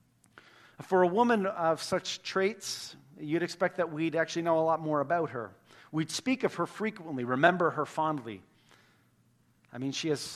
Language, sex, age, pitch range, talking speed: English, male, 40-59, 125-175 Hz, 170 wpm